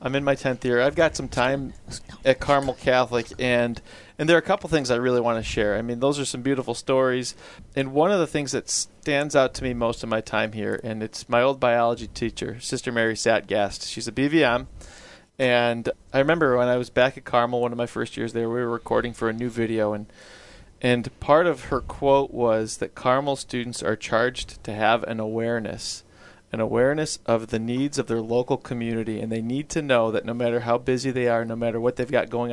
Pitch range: 115-135 Hz